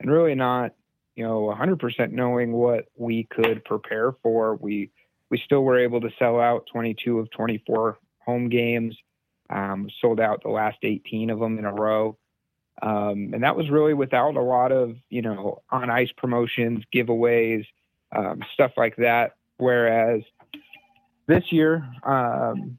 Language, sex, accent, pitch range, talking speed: English, male, American, 110-125 Hz, 155 wpm